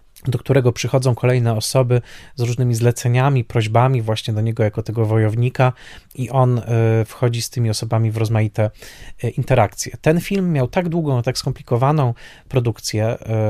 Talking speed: 140 wpm